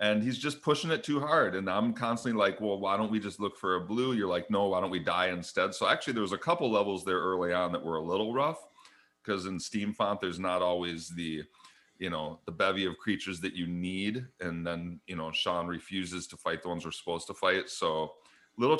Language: English